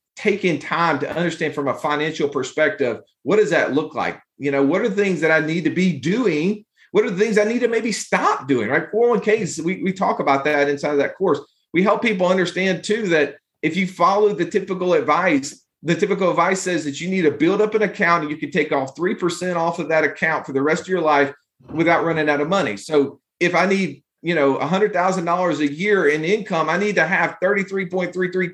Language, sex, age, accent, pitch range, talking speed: English, male, 40-59, American, 145-185 Hz, 225 wpm